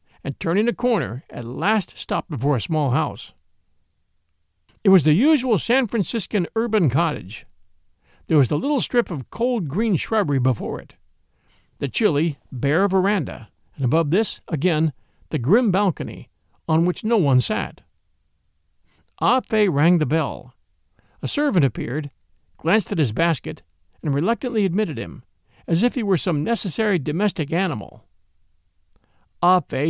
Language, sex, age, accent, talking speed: English, male, 50-69, American, 140 wpm